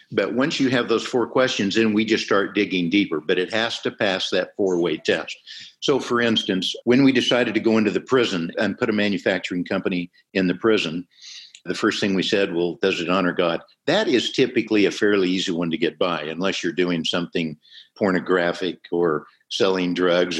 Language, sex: English, male